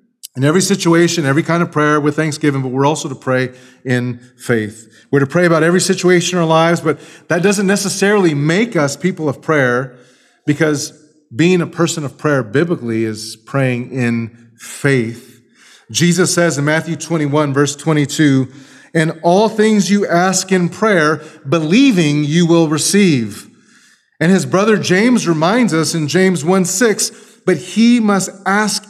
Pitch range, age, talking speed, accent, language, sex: 130-175 Hz, 40-59, 160 wpm, American, English, male